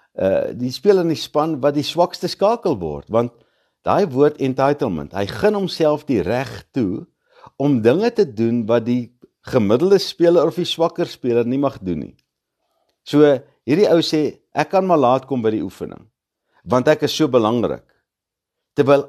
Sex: male